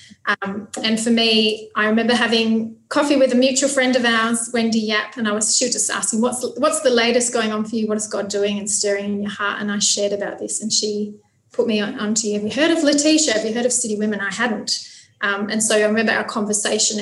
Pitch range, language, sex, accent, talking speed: 205-240 Hz, English, female, Australian, 255 wpm